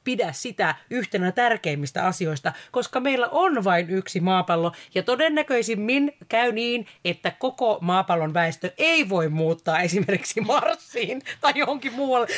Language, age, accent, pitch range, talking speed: Finnish, 30-49, native, 175-240 Hz, 130 wpm